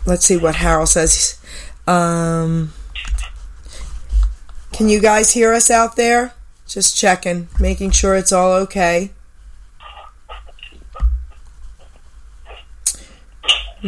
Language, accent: English, American